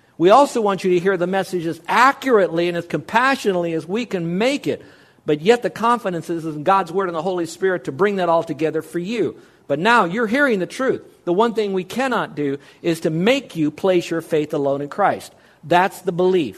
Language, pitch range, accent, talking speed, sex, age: English, 155-195 Hz, American, 225 wpm, male, 50-69